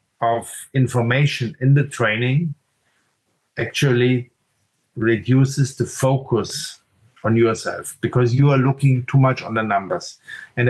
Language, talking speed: English, 120 wpm